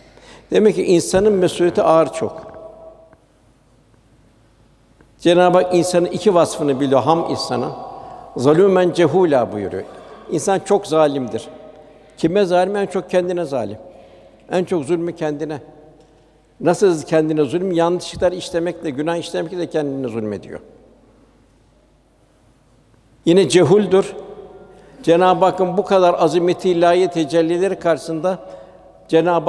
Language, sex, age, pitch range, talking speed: Turkish, male, 60-79, 155-180 Hz, 105 wpm